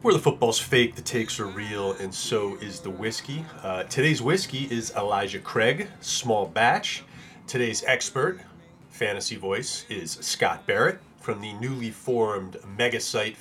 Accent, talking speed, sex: American, 150 wpm, male